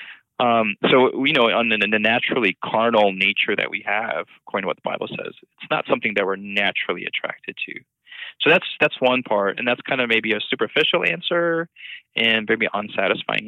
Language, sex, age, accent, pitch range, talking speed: English, male, 20-39, American, 95-110 Hz, 190 wpm